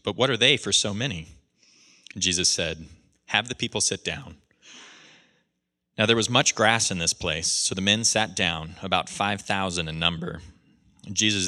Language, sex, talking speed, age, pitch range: English, male, 165 wpm, 30-49, 85-105 Hz